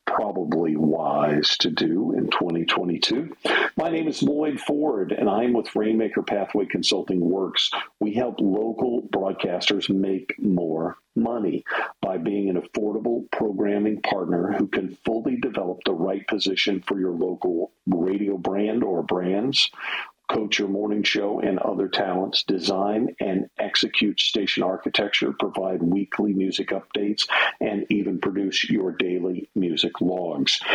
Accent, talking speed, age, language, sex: American, 135 wpm, 50-69, English, male